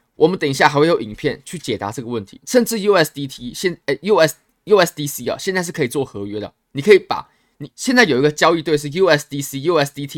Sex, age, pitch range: male, 20-39, 120-175 Hz